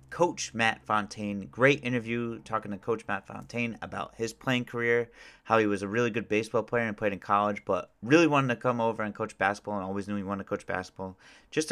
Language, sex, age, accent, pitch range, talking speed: English, male, 30-49, American, 100-115 Hz, 225 wpm